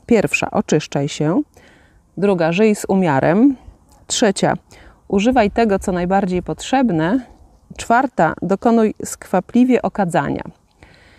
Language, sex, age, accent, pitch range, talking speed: Polish, female, 30-49, native, 160-210 Hz, 90 wpm